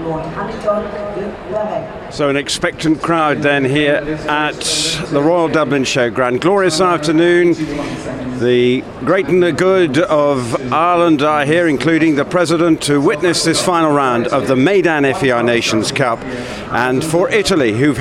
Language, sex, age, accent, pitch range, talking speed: English, male, 50-69, British, 140-185 Hz, 135 wpm